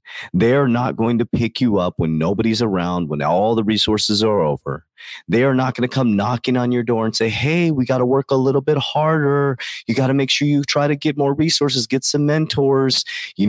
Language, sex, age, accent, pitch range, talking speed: English, male, 30-49, American, 110-140 Hz, 230 wpm